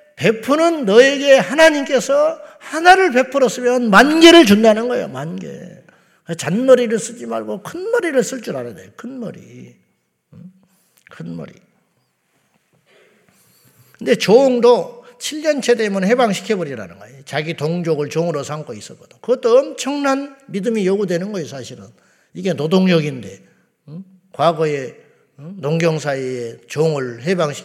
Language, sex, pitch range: Korean, male, 165-250 Hz